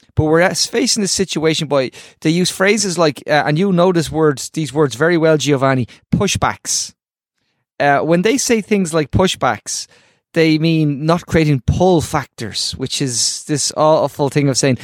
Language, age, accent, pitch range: English, 20-39, Irish, 130-165 Hz